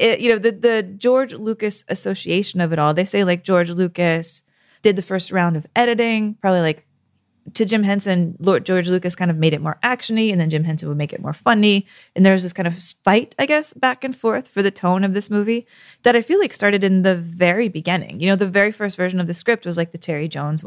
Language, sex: English, female